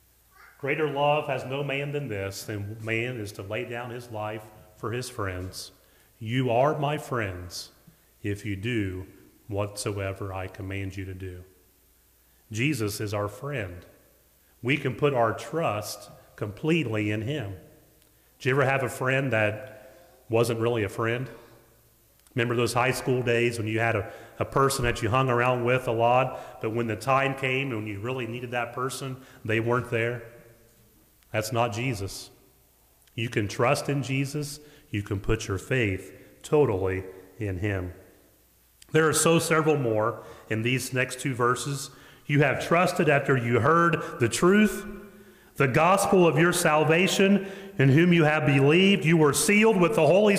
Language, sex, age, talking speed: English, male, 30-49, 160 wpm